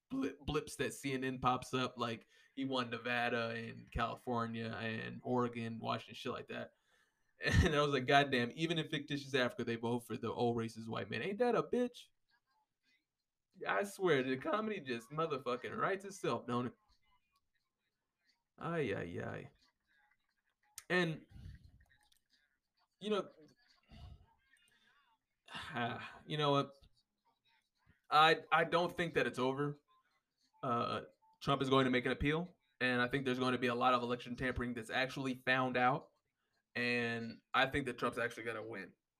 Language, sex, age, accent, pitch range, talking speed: English, male, 20-39, American, 115-140 Hz, 150 wpm